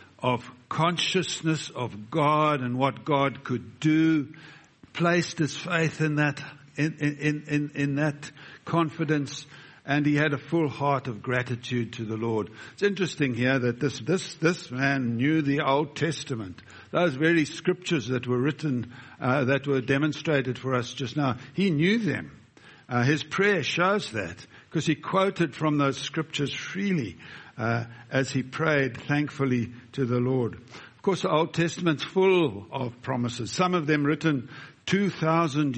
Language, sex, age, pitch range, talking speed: English, male, 60-79, 125-155 Hz, 155 wpm